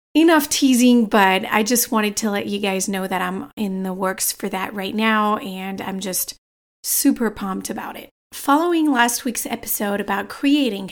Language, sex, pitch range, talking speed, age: English, female, 205-245 Hz, 180 wpm, 30-49